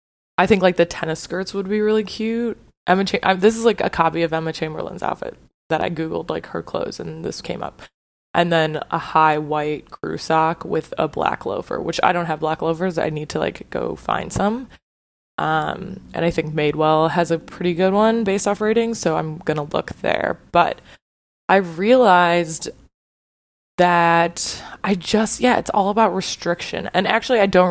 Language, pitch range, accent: English, 155-185 Hz, American